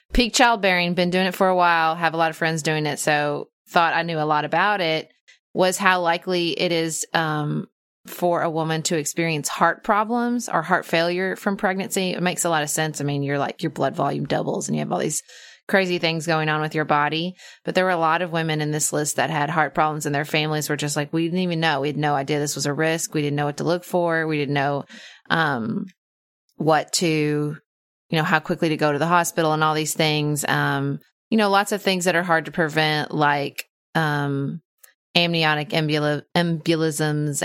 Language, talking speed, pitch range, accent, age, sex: English, 225 wpm, 150-180 Hz, American, 30-49, female